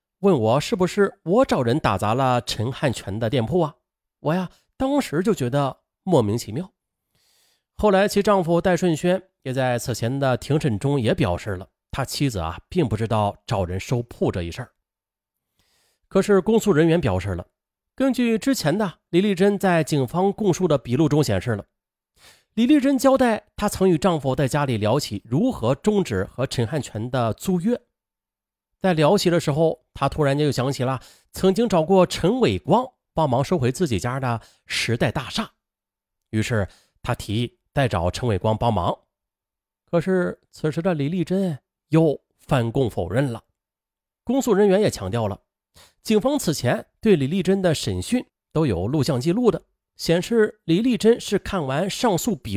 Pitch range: 115-195 Hz